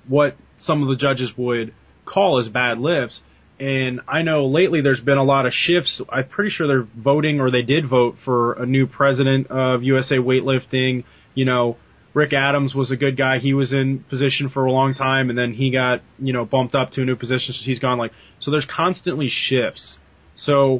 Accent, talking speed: American, 210 wpm